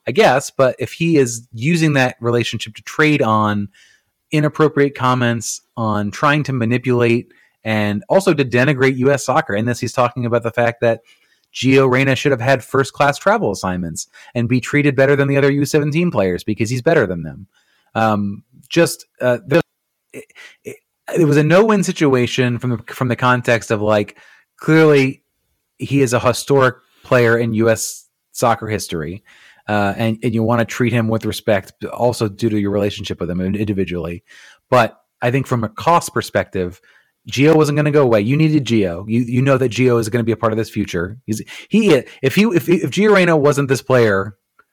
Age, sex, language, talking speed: 30-49, male, English, 195 wpm